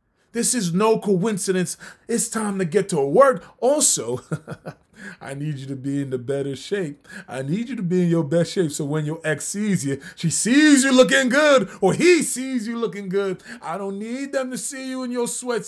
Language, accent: English, American